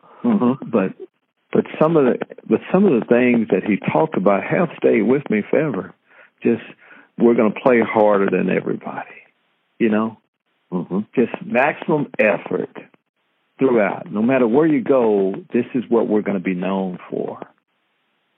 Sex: male